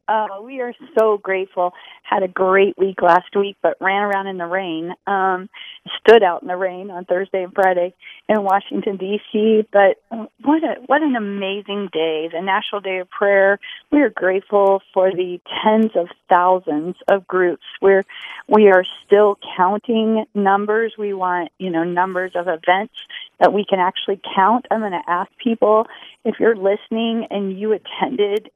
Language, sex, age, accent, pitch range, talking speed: English, female, 40-59, American, 185-220 Hz, 170 wpm